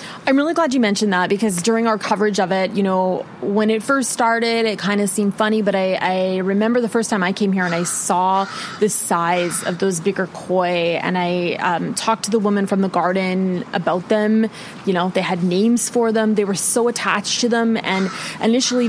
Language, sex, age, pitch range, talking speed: English, female, 20-39, 190-235 Hz, 220 wpm